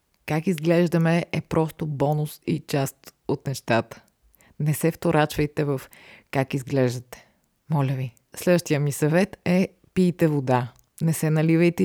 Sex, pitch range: female, 145-170 Hz